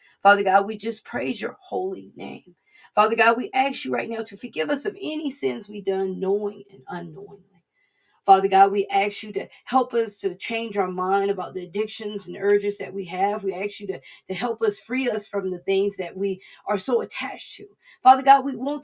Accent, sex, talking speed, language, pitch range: American, female, 215 wpm, English, 200-250 Hz